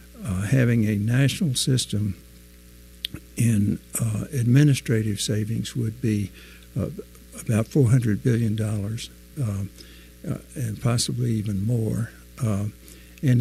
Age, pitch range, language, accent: 60-79, 105-120 Hz, English, American